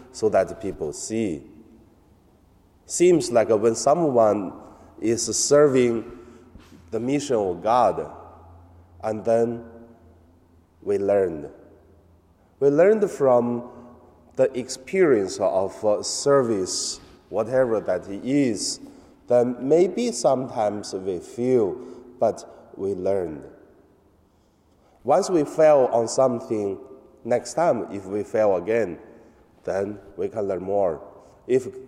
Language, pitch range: Chinese, 95-135 Hz